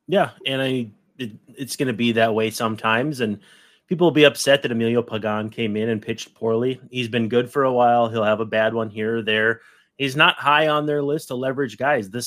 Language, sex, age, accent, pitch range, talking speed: English, male, 30-49, American, 110-140 Hz, 235 wpm